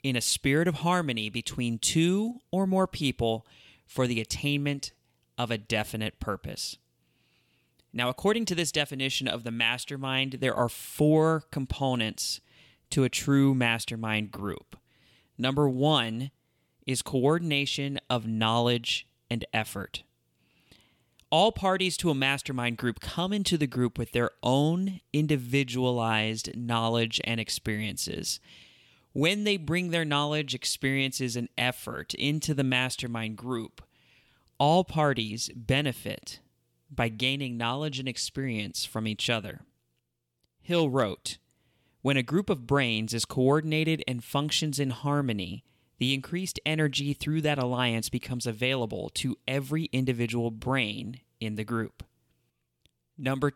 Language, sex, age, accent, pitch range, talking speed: English, male, 30-49, American, 110-145 Hz, 125 wpm